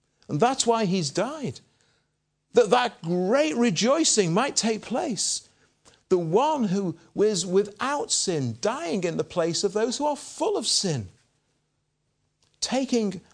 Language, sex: English, male